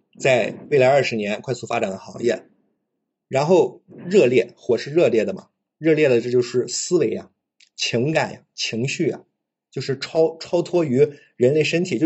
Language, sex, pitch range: Chinese, male, 120-160 Hz